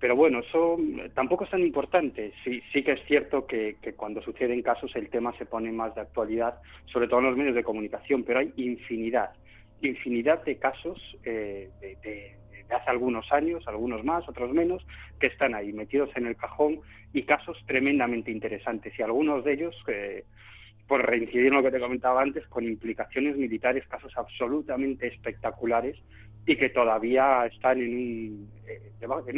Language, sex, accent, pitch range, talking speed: Spanish, male, Spanish, 115-140 Hz, 175 wpm